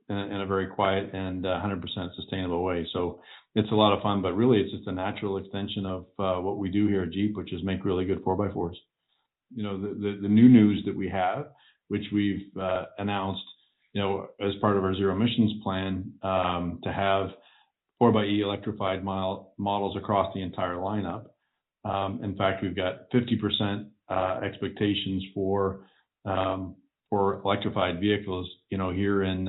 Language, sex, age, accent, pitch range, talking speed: English, male, 40-59, American, 95-105 Hz, 180 wpm